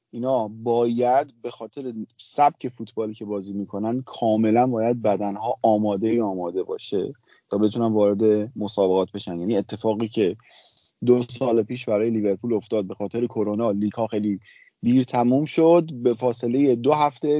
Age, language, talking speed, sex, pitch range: 30-49, Persian, 150 wpm, male, 115-135 Hz